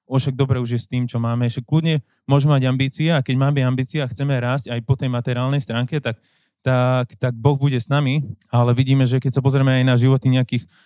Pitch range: 125-145 Hz